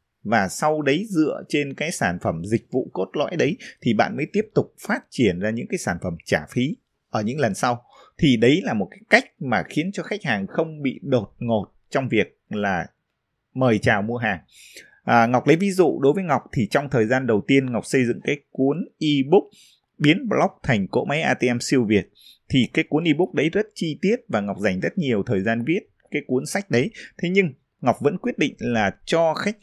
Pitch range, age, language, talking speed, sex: 120-175 Hz, 20-39, Vietnamese, 220 wpm, male